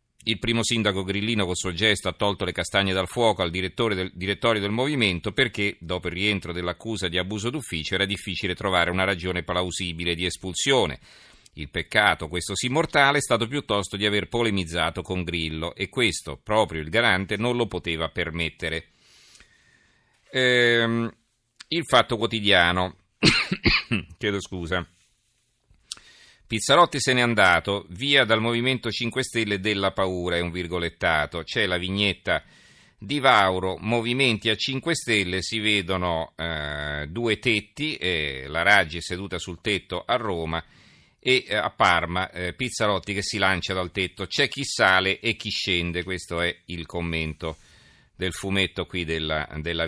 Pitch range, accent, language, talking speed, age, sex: 90-115 Hz, native, Italian, 150 wpm, 40-59, male